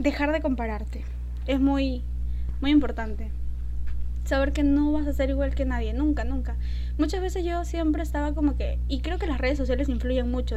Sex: female